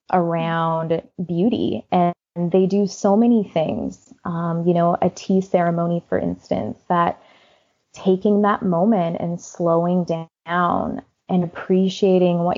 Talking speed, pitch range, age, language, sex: 125 wpm, 170-190 Hz, 20-39, English, female